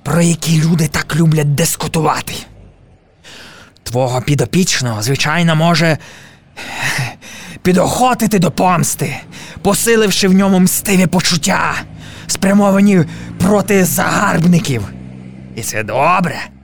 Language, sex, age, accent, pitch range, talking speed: Ukrainian, male, 20-39, native, 150-230 Hz, 85 wpm